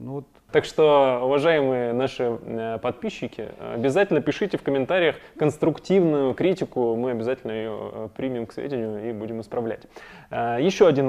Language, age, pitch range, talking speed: Russian, 20-39, 115-145 Hz, 120 wpm